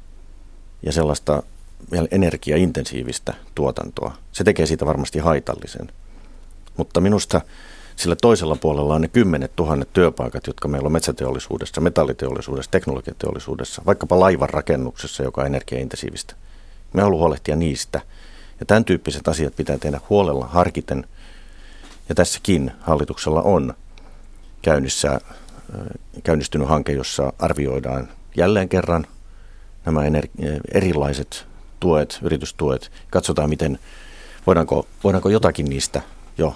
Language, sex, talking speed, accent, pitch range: Finnish, male, 110 wpm, native, 70-85 Hz